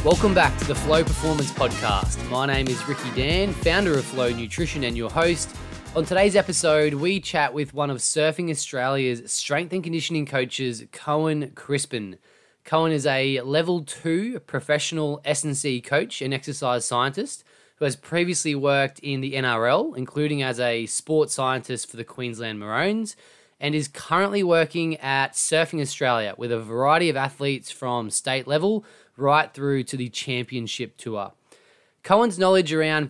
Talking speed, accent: 155 wpm, Australian